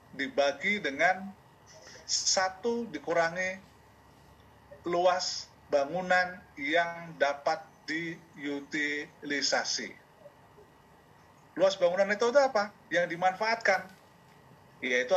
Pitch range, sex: 155-205 Hz, male